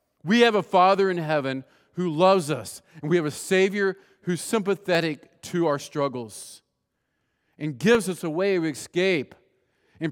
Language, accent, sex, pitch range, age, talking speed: English, American, male, 155-195 Hz, 40-59, 160 wpm